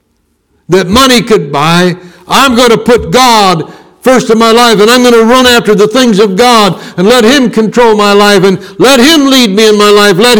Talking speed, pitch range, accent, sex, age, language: 220 wpm, 170-245 Hz, American, male, 60-79, English